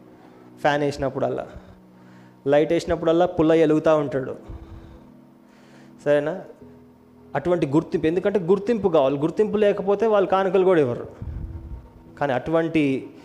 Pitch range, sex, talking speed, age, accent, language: 125-155 Hz, male, 95 wpm, 20-39, native, Telugu